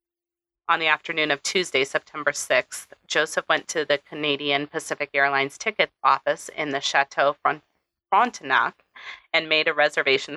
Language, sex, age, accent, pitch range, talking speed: English, female, 30-49, American, 145-215 Hz, 140 wpm